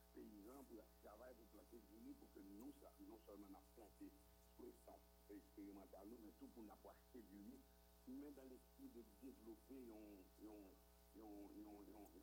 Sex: male